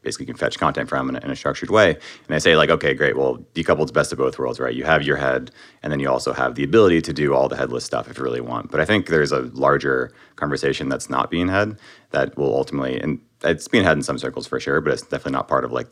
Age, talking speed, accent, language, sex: 30-49, 275 wpm, American, English, male